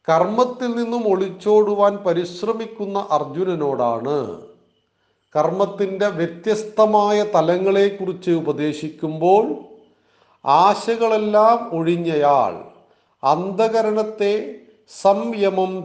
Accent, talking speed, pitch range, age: native, 50 wpm, 155-200 Hz, 40-59